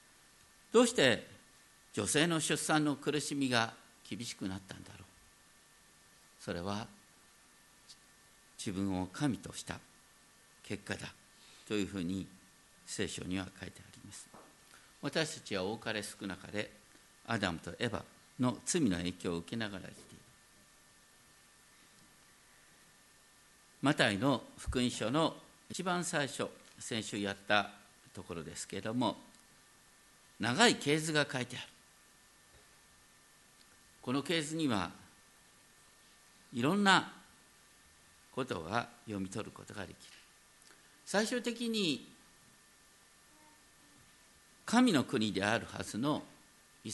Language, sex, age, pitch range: Japanese, male, 50-69, 100-155 Hz